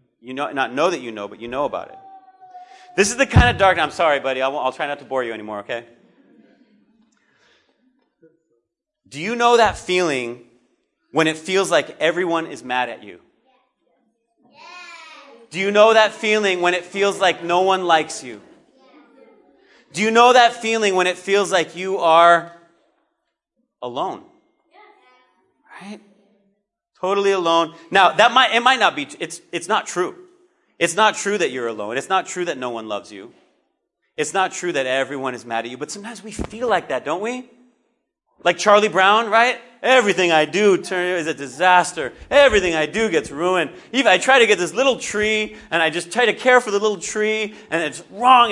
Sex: male